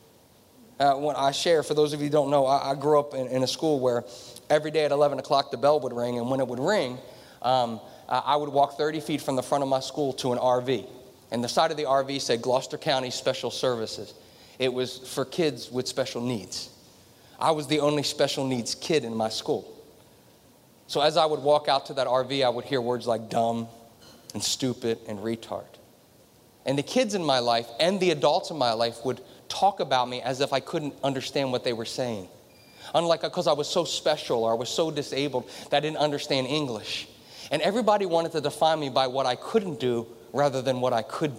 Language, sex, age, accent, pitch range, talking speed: English, male, 30-49, American, 120-150 Hz, 225 wpm